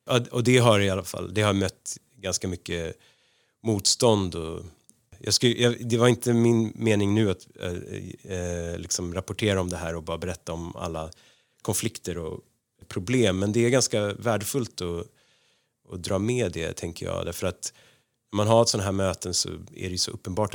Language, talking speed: Swedish, 195 wpm